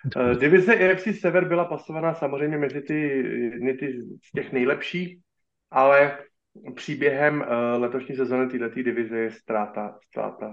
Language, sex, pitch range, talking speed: Slovak, male, 115-135 Hz, 120 wpm